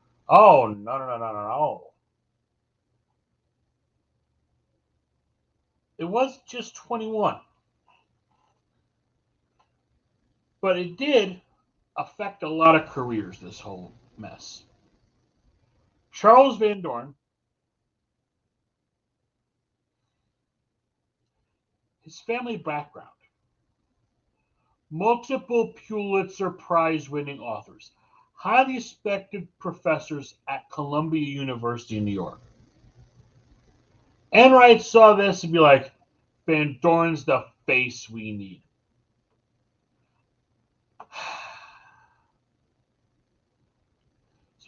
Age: 60-79